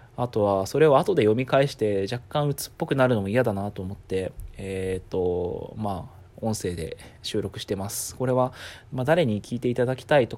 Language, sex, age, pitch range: Japanese, male, 20-39, 100-130 Hz